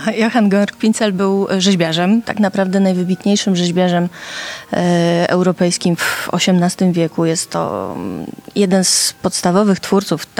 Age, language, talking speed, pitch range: 30-49, Polish, 110 wpm, 175-220 Hz